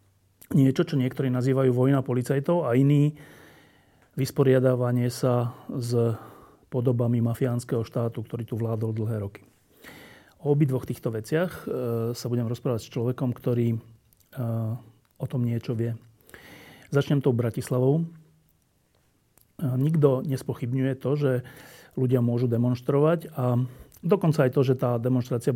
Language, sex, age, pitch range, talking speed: Slovak, male, 40-59, 120-140 Hz, 120 wpm